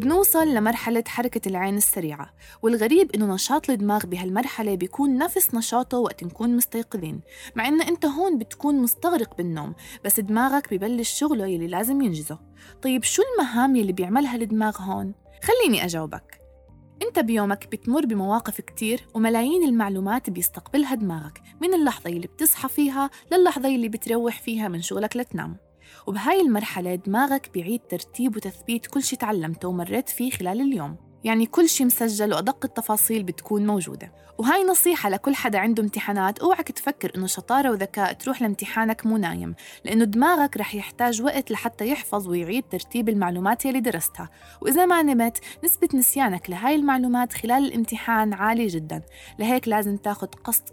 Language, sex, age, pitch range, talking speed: Arabic, female, 20-39, 200-270 Hz, 145 wpm